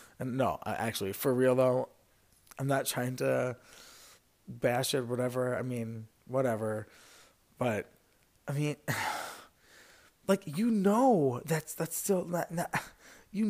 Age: 20-39